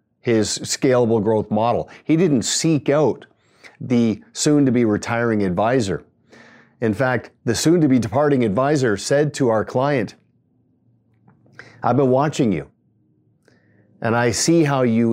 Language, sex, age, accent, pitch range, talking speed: English, male, 50-69, American, 110-140 Hz, 140 wpm